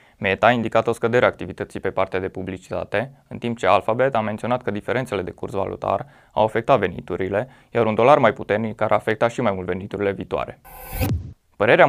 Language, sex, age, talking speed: Romanian, male, 20-39, 190 wpm